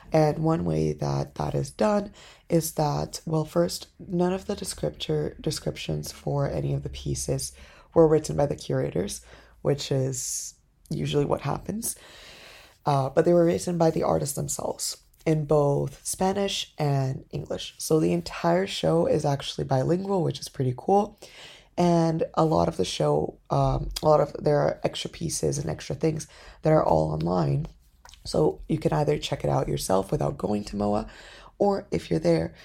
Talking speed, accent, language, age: 170 wpm, American, English, 20-39